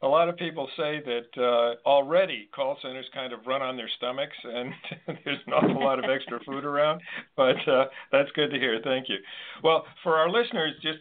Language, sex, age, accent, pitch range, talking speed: English, male, 50-69, American, 120-150 Hz, 205 wpm